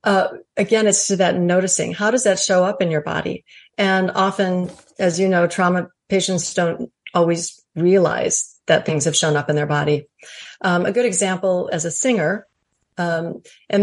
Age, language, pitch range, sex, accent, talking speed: 40-59, English, 175-205 Hz, female, American, 180 wpm